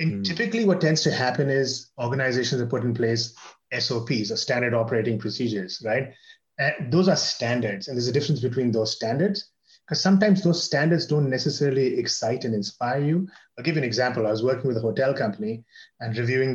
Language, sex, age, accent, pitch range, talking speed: English, male, 30-49, Indian, 120-170 Hz, 185 wpm